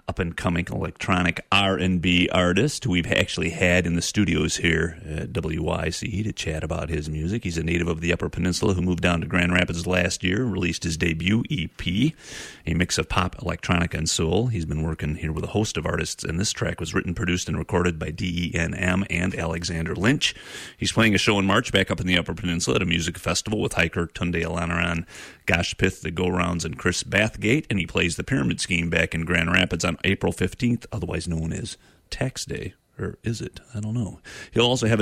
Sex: male